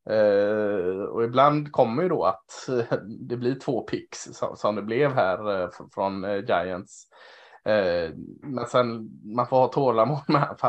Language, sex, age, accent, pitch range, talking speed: Swedish, male, 20-39, Norwegian, 115-145 Hz, 145 wpm